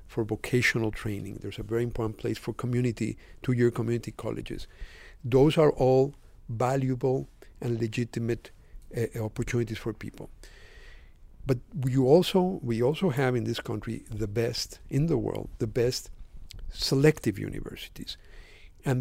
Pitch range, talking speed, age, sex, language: 115-130 Hz, 130 wpm, 50-69, male, English